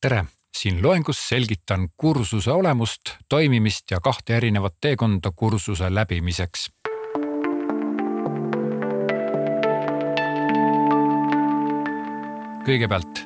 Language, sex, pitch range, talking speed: Czech, male, 95-125 Hz, 65 wpm